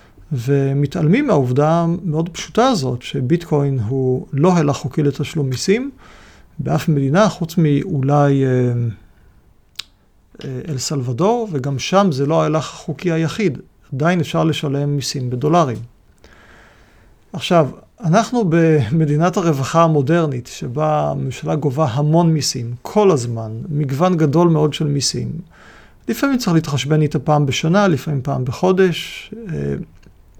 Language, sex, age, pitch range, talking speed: Hebrew, male, 40-59, 140-175 Hz, 110 wpm